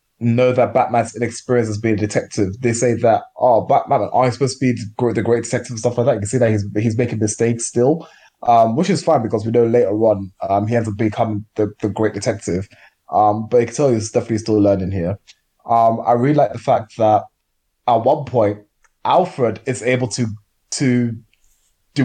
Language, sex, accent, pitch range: English, male, British, 105-125 Hz